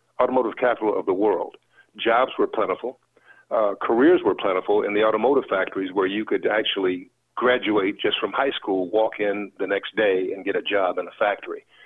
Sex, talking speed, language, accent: male, 185 wpm, English, American